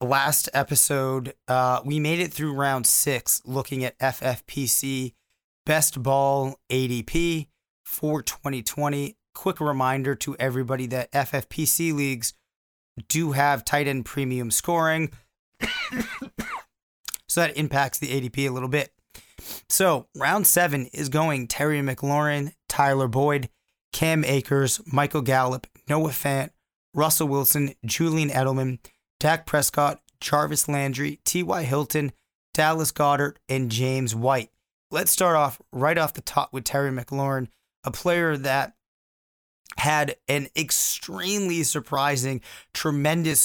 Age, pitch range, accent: 30-49, 130-150 Hz, American